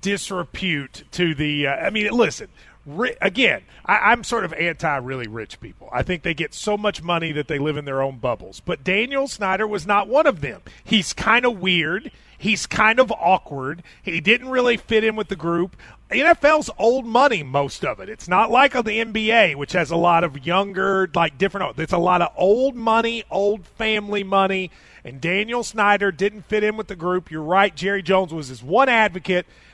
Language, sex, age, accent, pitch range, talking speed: English, male, 30-49, American, 160-215 Hz, 195 wpm